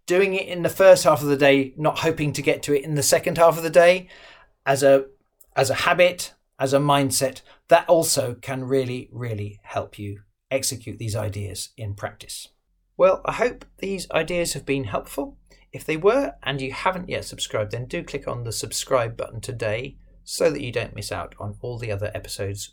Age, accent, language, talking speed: 40-59, British, English, 205 wpm